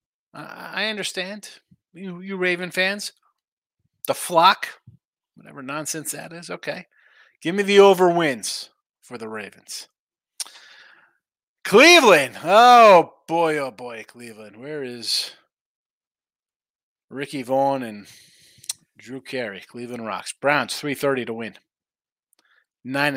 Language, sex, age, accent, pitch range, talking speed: English, male, 30-49, American, 135-180 Hz, 110 wpm